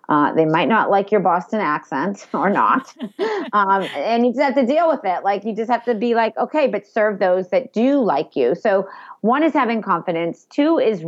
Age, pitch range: 40-59, 175-240 Hz